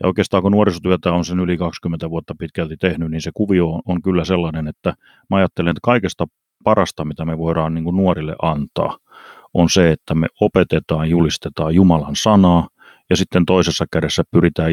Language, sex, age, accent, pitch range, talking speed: Finnish, male, 30-49, native, 80-95 Hz, 170 wpm